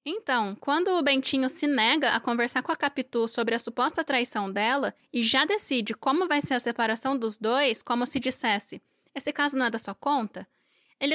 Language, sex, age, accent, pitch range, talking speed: Portuguese, female, 10-29, Brazilian, 235-285 Hz, 200 wpm